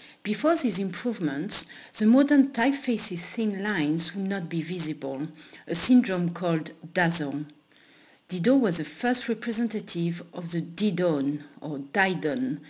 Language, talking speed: English, 125 wpm